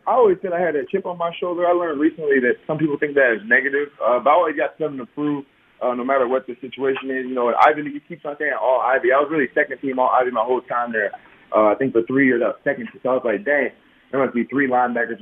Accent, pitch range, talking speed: American, 120-155 Hz, 295 wpm